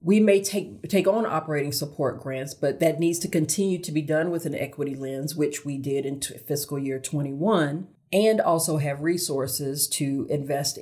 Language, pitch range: English, 140-160 Hz